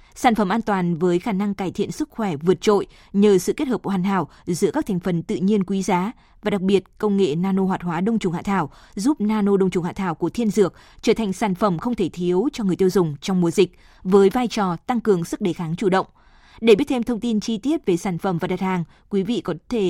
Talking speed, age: 270 wpm, 20-39